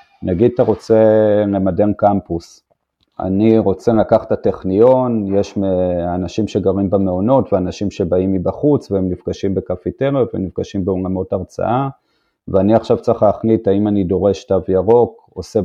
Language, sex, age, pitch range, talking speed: Hebrew, male, 30-49, 95-115 Hz, 125 wpm